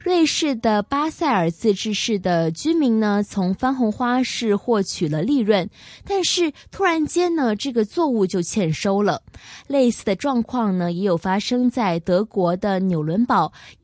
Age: 20-39